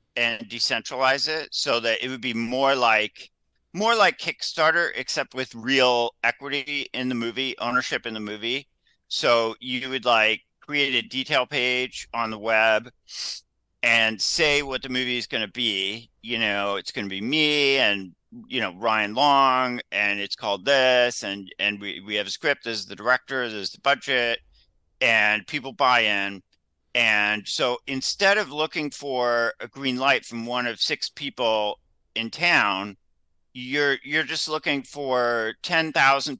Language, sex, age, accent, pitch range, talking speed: English, male, 50-69, American, 110-135 Hz, 165 wpm